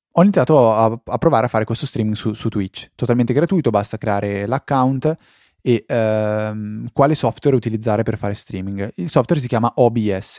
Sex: male